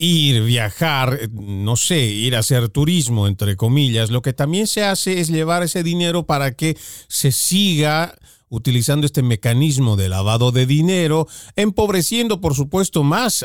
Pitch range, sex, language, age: 125-185 Hz, male, Spanish, 40-59